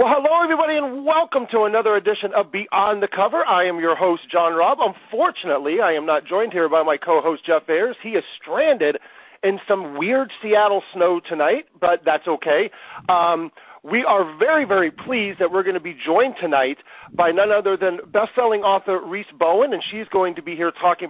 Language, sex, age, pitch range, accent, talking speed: English, male, 40-59, 160-210 Hz, American, 200 wpm